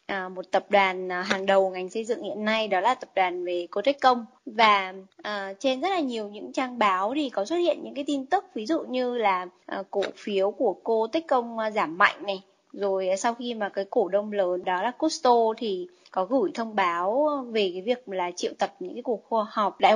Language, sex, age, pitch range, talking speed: Vietnamese, female, 20-39, 195-275 Hz, 220 wpm